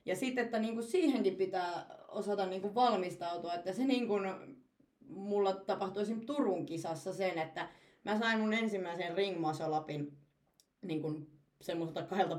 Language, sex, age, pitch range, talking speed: Finnish, female, 30-49, 175-225 Hz, 125 wpm